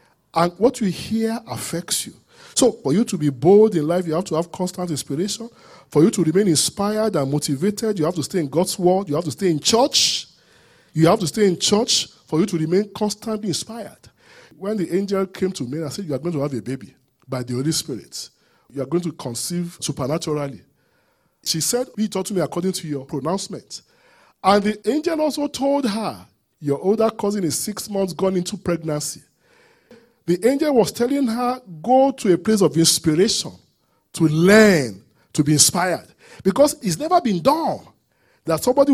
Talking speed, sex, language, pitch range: 195 wpm, male, English, 160-245 Hz